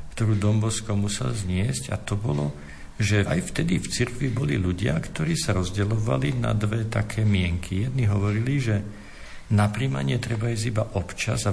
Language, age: Slovak, 50-69